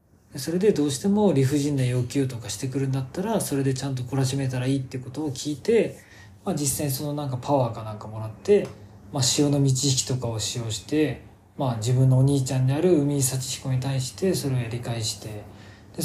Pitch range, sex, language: 115-155 Hz, male, Japanese